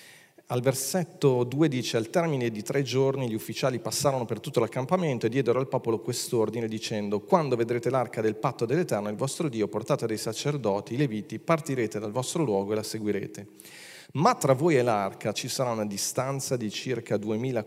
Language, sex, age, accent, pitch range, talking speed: Italian, male, 40-59, native, 105-135 Hz, 185 wpm